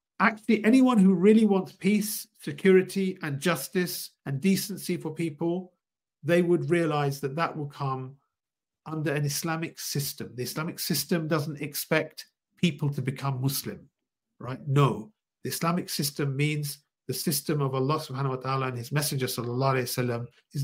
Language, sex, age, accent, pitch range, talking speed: English, male, 50-69, British, 135-175 Hz, 150 wpm